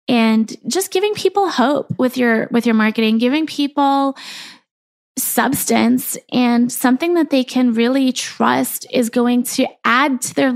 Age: 20-39